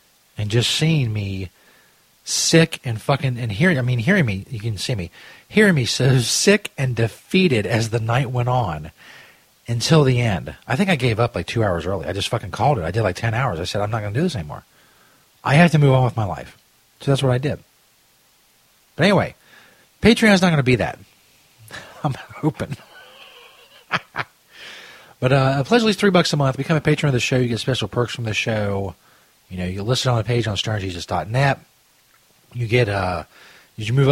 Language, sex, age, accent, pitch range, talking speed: English, male, 40-59, American, 100-135 Hz, 215 wpm